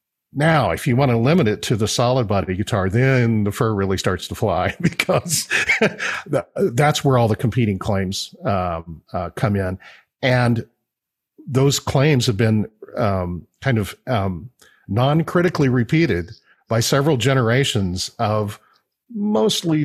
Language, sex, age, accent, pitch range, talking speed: English, male, 50-69, American, 95-130 Hz, 140 wpm